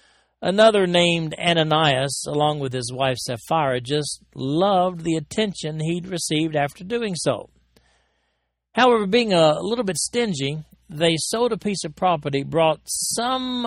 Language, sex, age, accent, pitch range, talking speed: English, male, 50-69, American, 130-175 Hz, 135 wpm